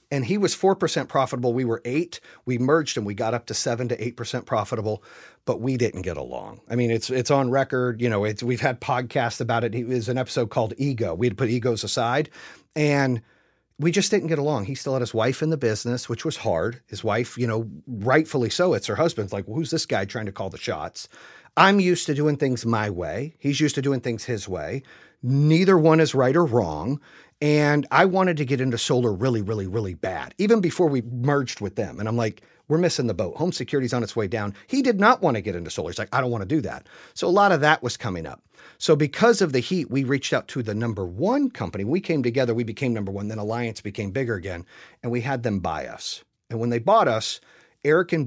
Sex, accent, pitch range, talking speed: male, American, 115-145 Hz, 245 wpm